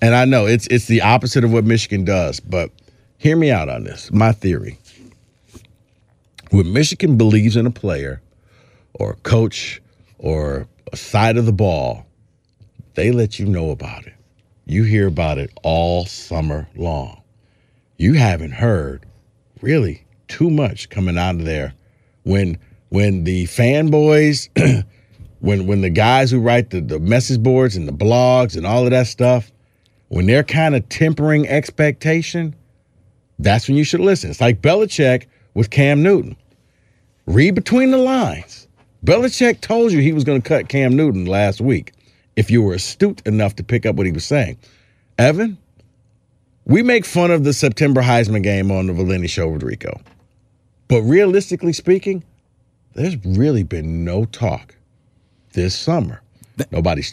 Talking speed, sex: 160 wpm, male